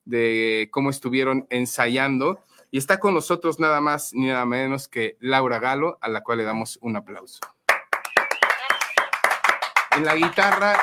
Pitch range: 115-140 Hz